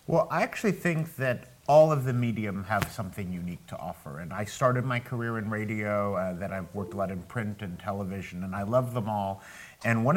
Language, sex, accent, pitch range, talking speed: English, male, American, 100-130 Hz, 225 wpm